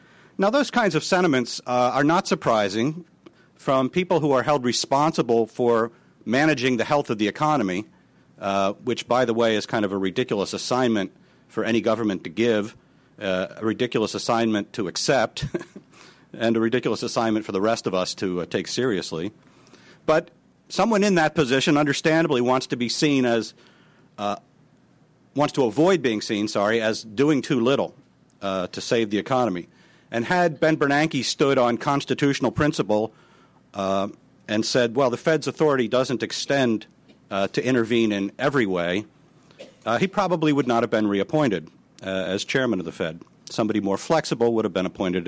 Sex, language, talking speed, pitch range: male, English, 170 wpm, 110-150 Hz